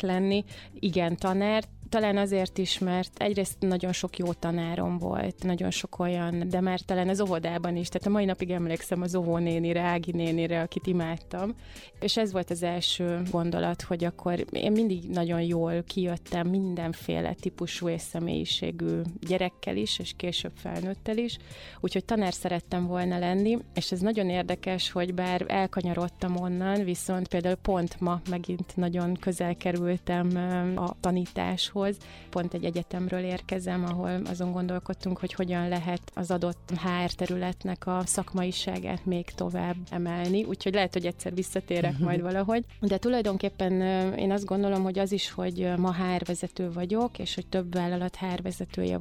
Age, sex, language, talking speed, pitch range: 30-49, female, Hungarian, 150 wpm, 175-190 Hz